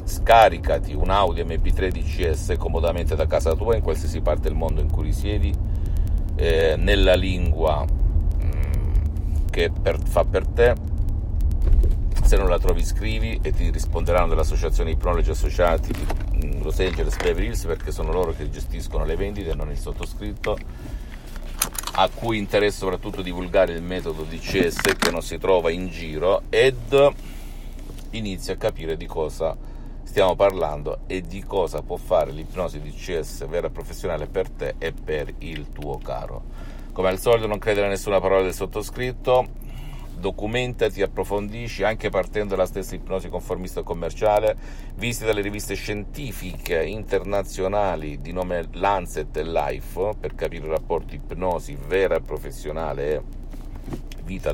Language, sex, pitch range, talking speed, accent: Italian, male, 80-100 Hz, 140 wpm, native